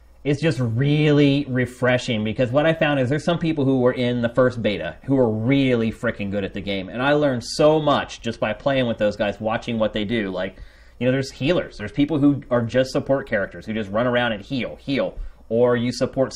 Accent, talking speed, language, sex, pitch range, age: American, 230 wpm, English, male, 105-135 Hz, 30-49